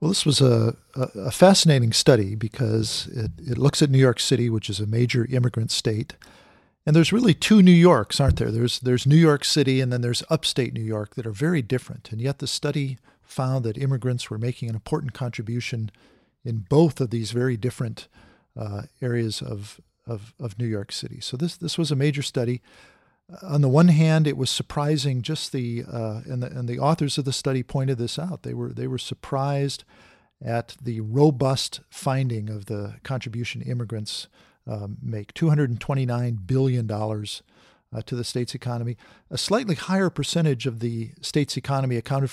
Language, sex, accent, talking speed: English, male, American, 180 wpm